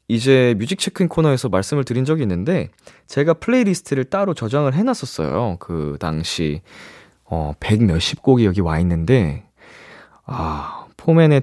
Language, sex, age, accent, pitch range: Korean, male, 20-39, native, 90-150 Hz